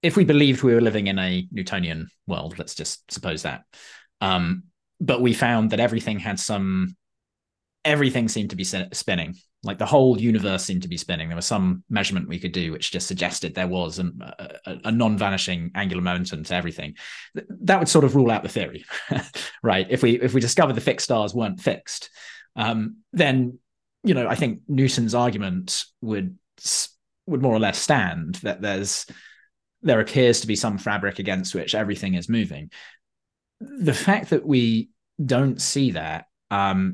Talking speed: 175 wpm